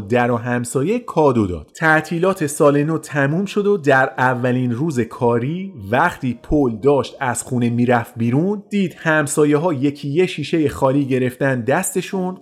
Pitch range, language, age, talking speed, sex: 125-175 Hz, Persian, 30-49, 150 wpm, male